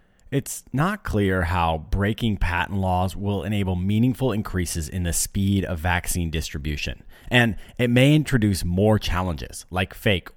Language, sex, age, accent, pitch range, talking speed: English, male, 30-49, American, 90-120 Hz, 145 wpm